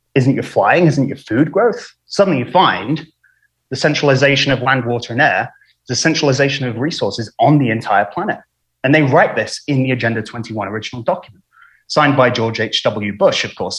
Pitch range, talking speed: 115-140 Hz, 185 wpm